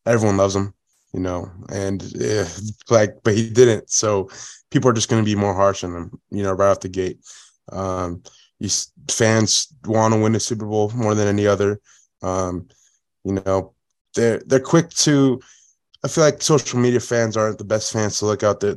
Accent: American